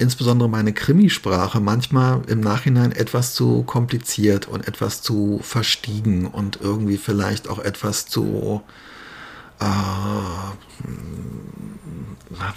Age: 50-69